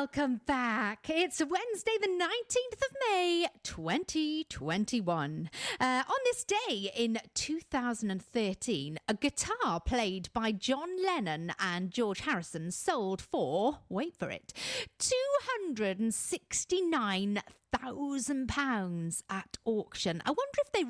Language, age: English, 40-59